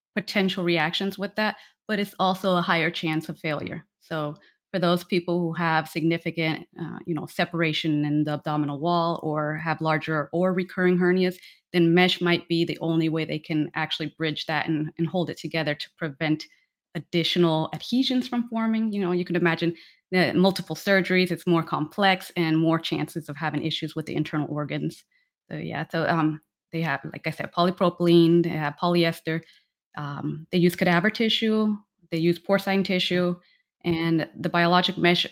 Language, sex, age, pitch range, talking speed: English, female, 30-49, 160-180 Hz, 175 wpm